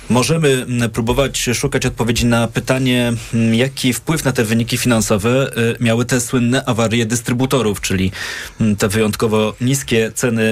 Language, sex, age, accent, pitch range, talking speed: Polish, male, 20-39, native, 110-130 Hz, 125 wpm